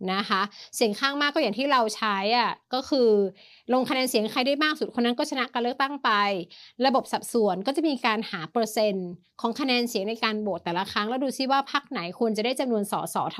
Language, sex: Thai, female